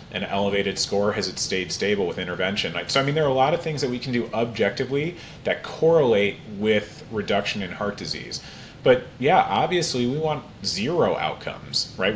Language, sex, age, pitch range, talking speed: English, male, 30-49, 105-135 Hz, 190 wpm